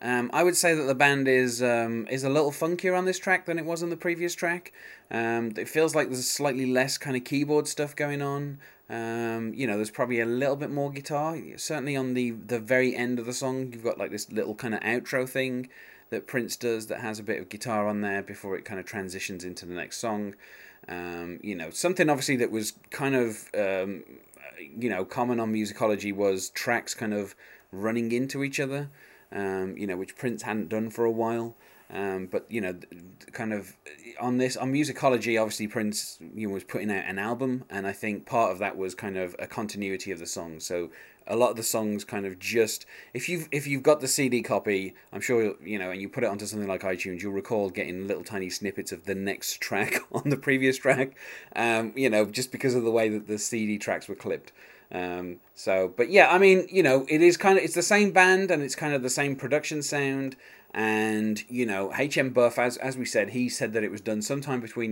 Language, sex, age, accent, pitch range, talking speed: English, male, 20-39, British, 105-140 Hz, 230 wpm